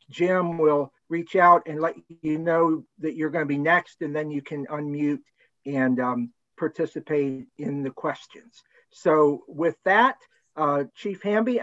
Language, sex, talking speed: English, male, 160 wpm